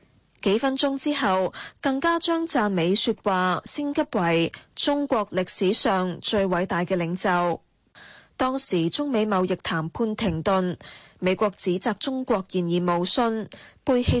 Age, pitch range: 20-39, 180-230 Hz